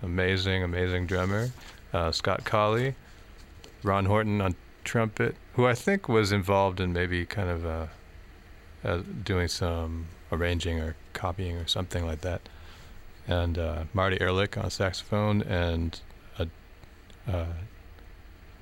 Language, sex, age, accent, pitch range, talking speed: English, male, 30-49, American, 80-95 Hz, 125 wpm